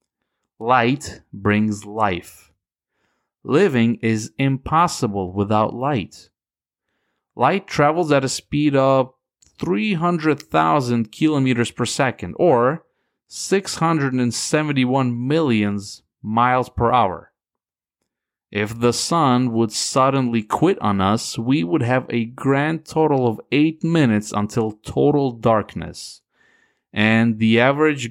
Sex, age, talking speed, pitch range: male, 30-49, 100 wpm, 105-140 Hz